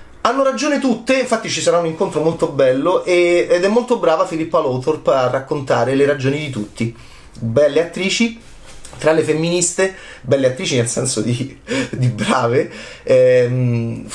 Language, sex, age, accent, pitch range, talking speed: Italian, male, 30-49, native, 115-170 Hz, 155 wpm